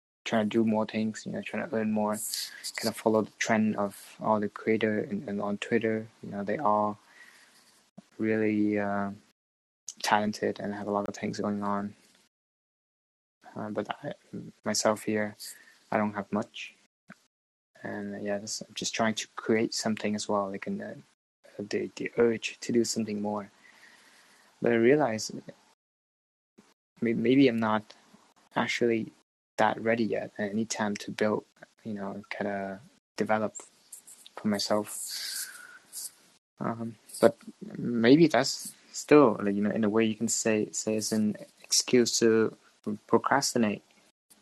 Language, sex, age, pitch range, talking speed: English, male, 20-39, 100-115 Hz, 150 wpm